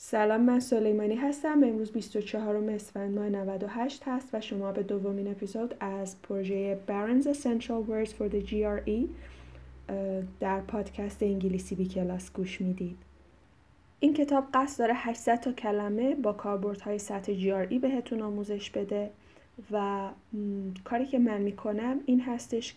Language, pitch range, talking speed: Persian, 195-230 Hz, 140 wpm